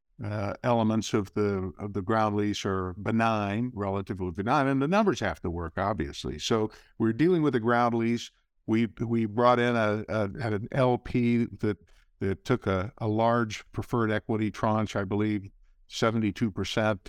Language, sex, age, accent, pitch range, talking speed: English, male, 50-69, American, 100-120 Hz, 170 wpm